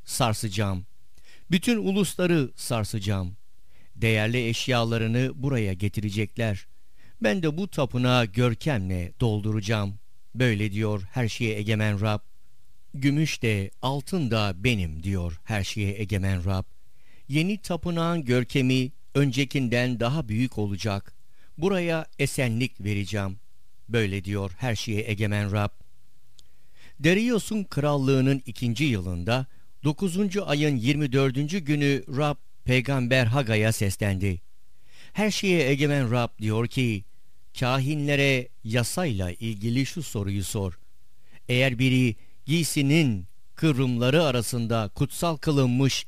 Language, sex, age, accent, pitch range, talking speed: Turkish, male, 50-69, native, 105-145 Hz, 100 wpm